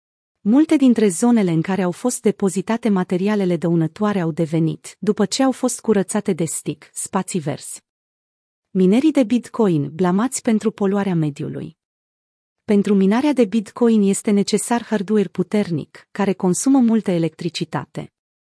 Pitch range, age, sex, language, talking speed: 175-225 Hz, 30-49, female, Romanian, 130 wpm